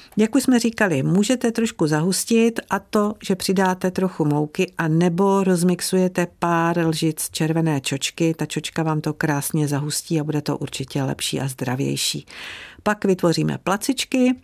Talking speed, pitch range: 150 wpm, 145-195 Hz